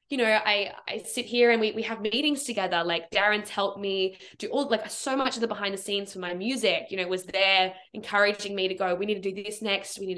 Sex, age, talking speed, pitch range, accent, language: female, 10-29, 265 wpm, 185-235 Hz, Australian, English